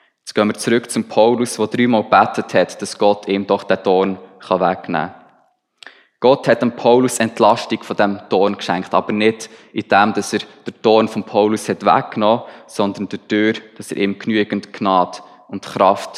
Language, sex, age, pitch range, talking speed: German, male, 20-39, 95-110 Hz, 180 wpm